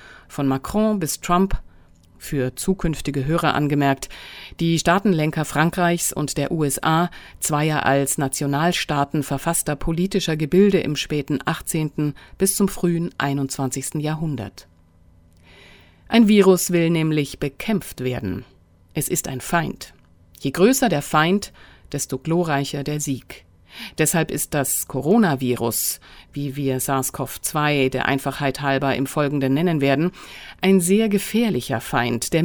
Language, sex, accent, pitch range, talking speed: German, female, German, 135-175 Hz, 120 wpm